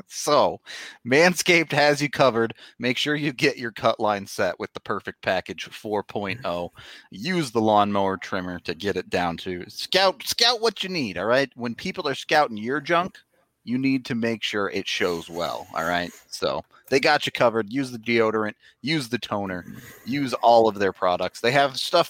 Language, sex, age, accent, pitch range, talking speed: English, male, 30-49, American, 100-140 Hz, 185 wpm